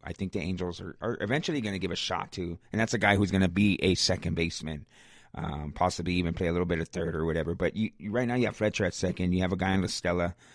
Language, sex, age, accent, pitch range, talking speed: English, male, 30-49, American, 95-120 Hz, 295 wpm